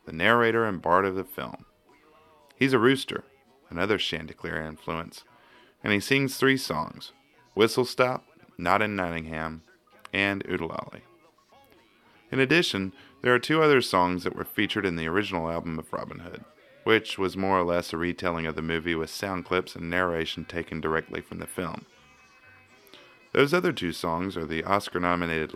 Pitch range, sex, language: 85-100 Hz, male, English